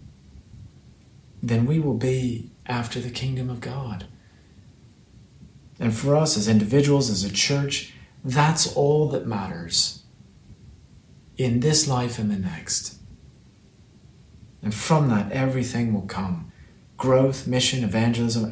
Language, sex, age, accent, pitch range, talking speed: English, male, 40-59, American, 110-130 Hz, 115 wpm